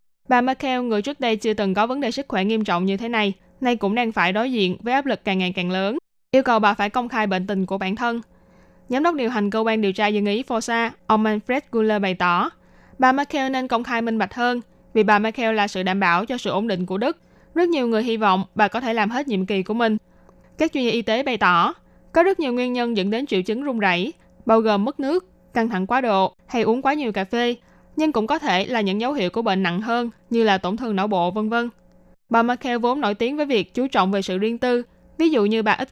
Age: 20-39